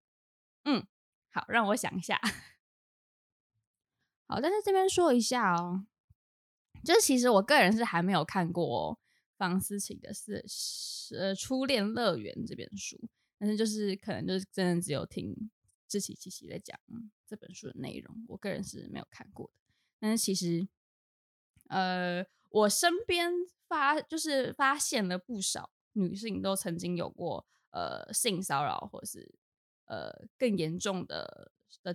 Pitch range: 180-230 Hz